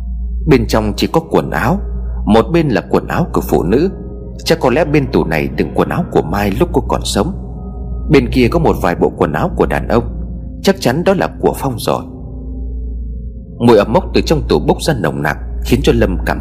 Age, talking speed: 30-49, 225 wpm